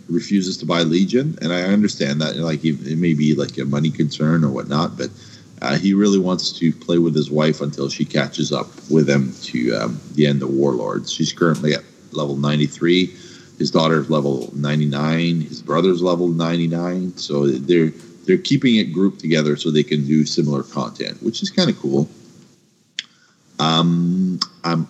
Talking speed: 185 wpm